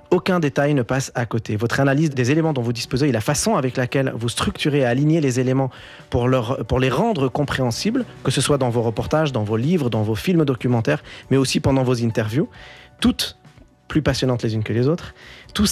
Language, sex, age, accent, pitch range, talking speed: French, male, 30-49, French, 120-155 Hz, 220 wpm